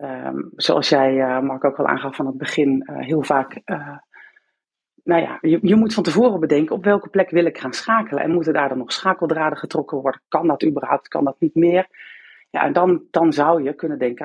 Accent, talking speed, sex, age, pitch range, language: Dutch, 225 wpm, female, 40-59, 135-165 Hz, Dutch